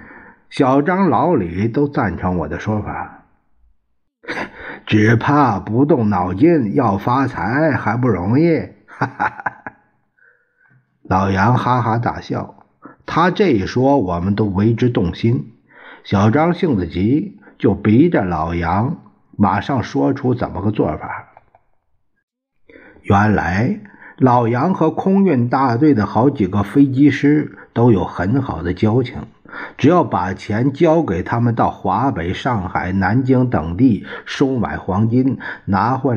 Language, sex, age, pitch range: Chinese, male, 50-69, 100-145 Hz